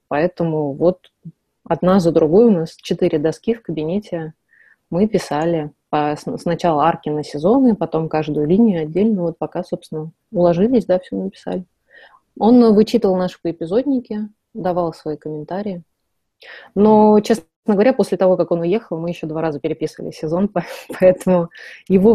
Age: 20-39